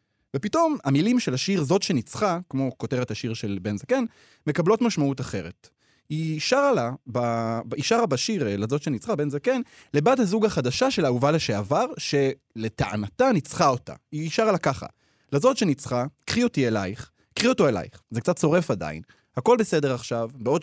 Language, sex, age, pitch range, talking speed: Hebrew, male, 20-39, 125-205 Hz, 160 wpm